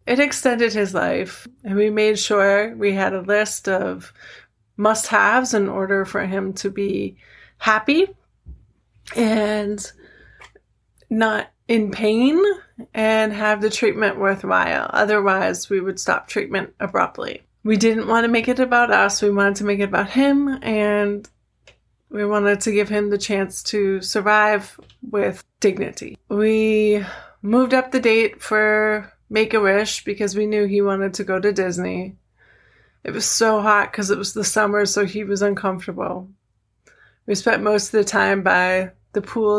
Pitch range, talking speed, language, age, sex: 195-225 Hz, 155 wpm, English, 20-39, female